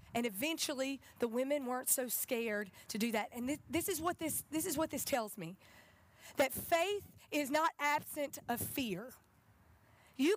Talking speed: 175 wpm